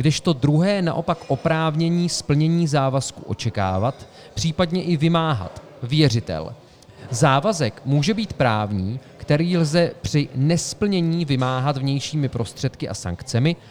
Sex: male